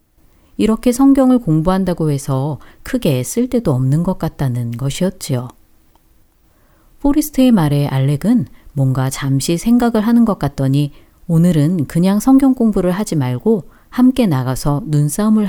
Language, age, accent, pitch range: Korean, 40-59, native, 135-210 Hz